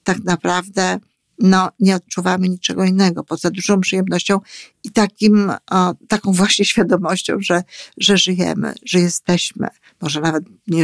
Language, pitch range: Polish, 165-195 Hz